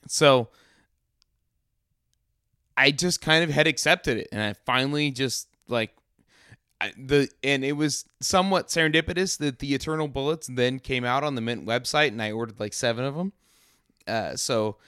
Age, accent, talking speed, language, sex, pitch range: 30-49, American, 155 wpm, English, male, 110-145 Hz